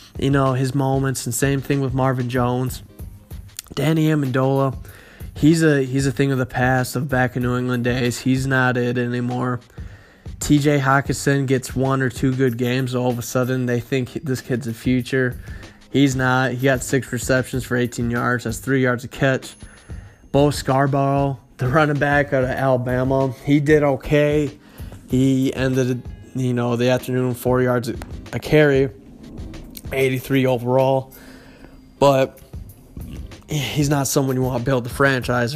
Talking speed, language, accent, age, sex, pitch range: 160 wpm, English, American, 20-39, male, 120-140 Hz